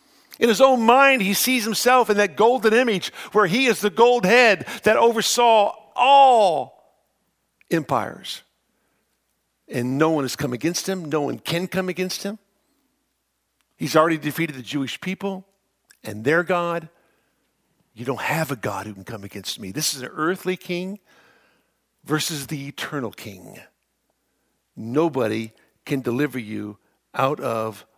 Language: English